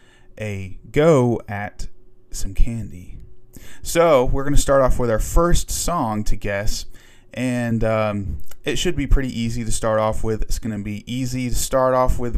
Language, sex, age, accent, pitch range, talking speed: English, male, 20-39, American, 100-125 Hz, 170 wpm